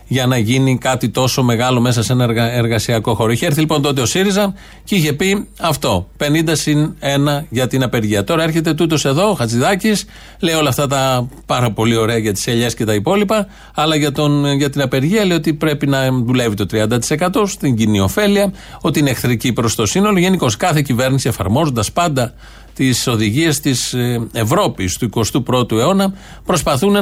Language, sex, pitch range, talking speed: Greek, male, 120-160 Hz, 180 wpm